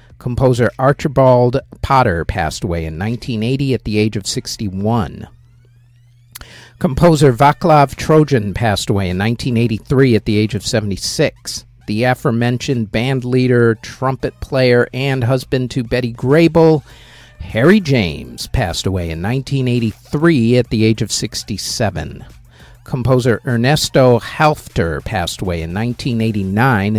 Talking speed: 120 wpm